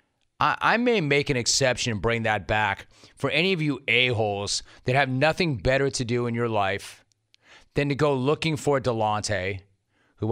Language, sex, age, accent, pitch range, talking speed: English, male, 30-49, American, 110-150 Hz, 175 wpm